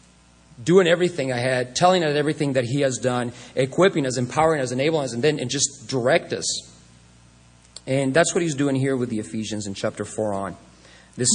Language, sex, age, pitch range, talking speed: English, male, 40-59, 120-155 Hz, 195 wpm